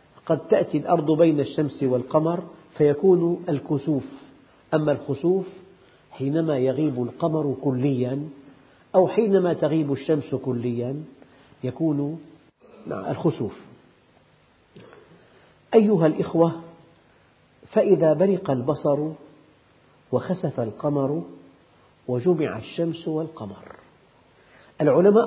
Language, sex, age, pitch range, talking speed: Arabic, male, 50-69, 140-180 Hz, 75 wpm